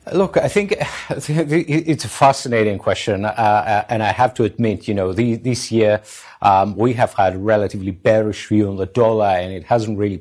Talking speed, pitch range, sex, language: 195 wpm, 105-130 Hz, male, English